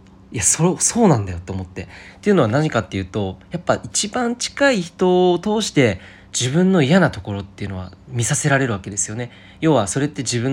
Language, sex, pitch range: Japanese, male, 100-150 Hz